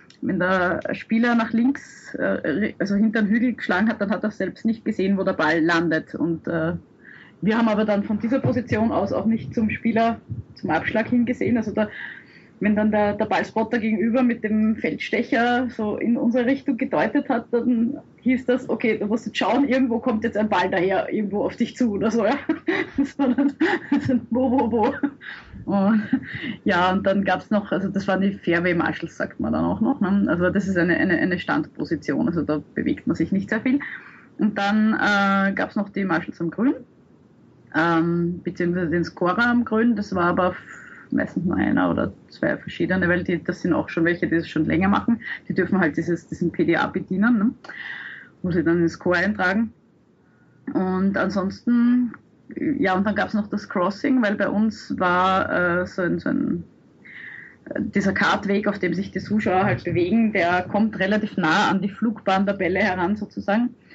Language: German